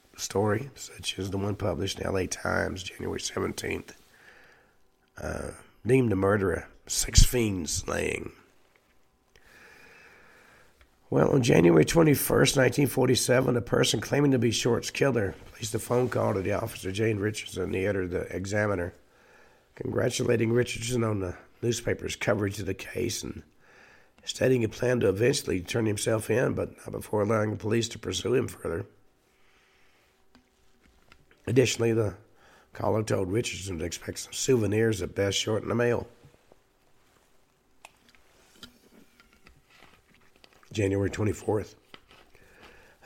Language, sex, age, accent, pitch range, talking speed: English, male, 60-79, American, 100-120 Hz, 125 wpm